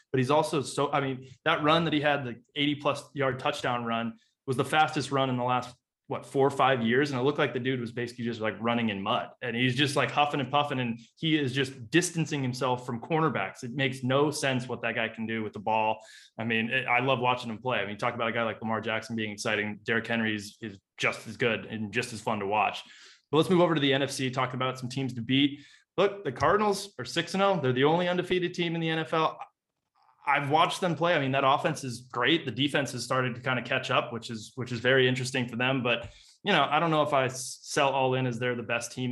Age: 20-39